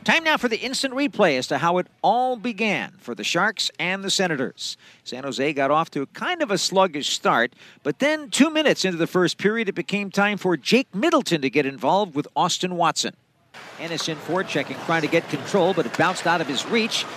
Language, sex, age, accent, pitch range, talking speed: English, male, 50-69, American, 175-250 Hz, 220 wpm